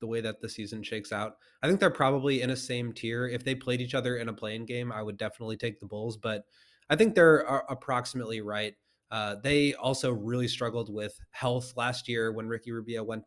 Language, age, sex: English, 20-39, male